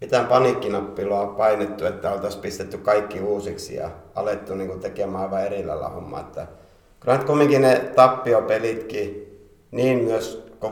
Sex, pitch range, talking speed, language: male, 100-115 Hz, 110 wpm, Finnish